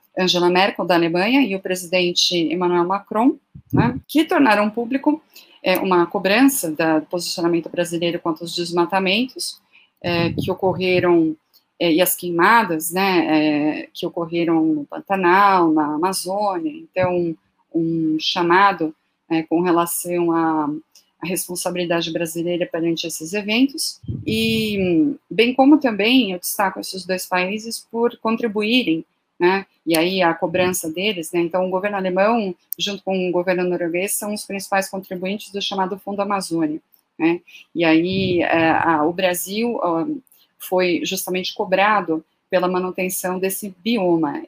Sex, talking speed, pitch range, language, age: female, 135 wpm, 170-200 Hz, Portuguese, 30-49